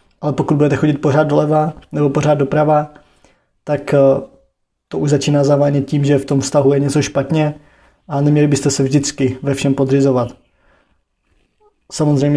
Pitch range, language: 135-145 Hz, Czech